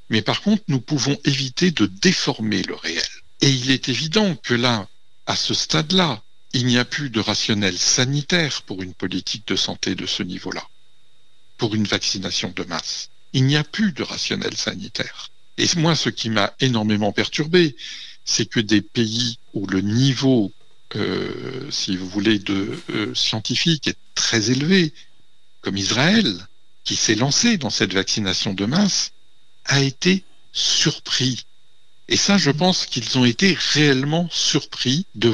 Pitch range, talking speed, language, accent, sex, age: 110-150 Hz, 160 wpm, French, French, male, 60-79